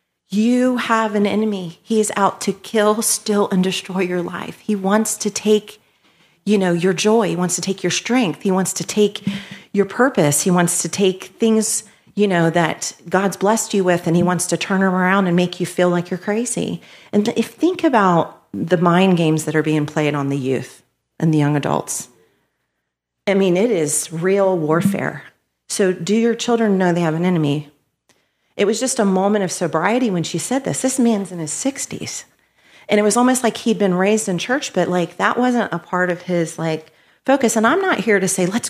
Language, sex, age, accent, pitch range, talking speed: English, female, 40-59, American, 165-215 Hz, 210 wpm